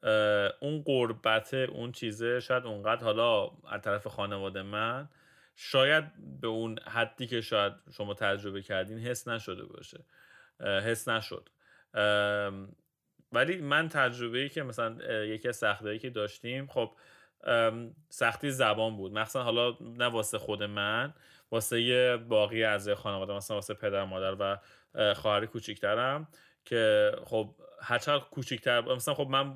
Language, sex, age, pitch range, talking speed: Persian, male, 30-49, 105-125 Hz, 130 wpm